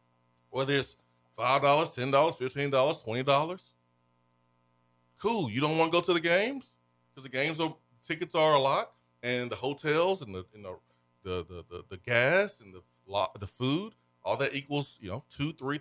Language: English